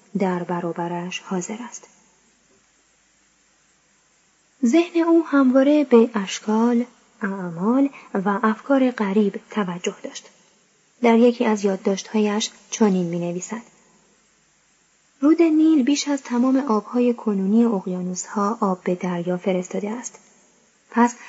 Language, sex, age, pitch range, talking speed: Persian, female, 20-39, 195-245 Hz, 100 wpm